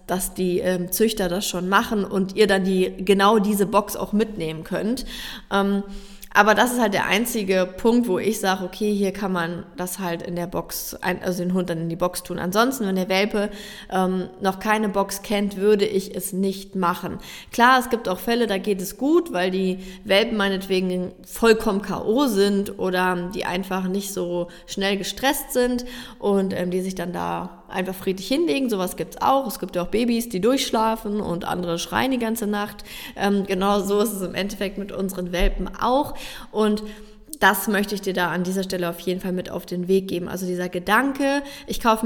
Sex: female